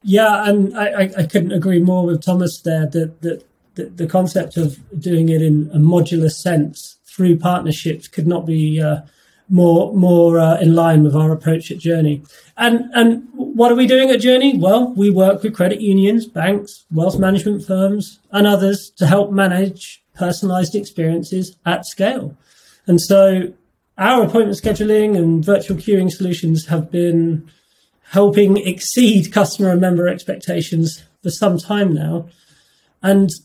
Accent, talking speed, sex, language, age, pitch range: British, 155 wpm, male, English, 30-49, 165-200 Hz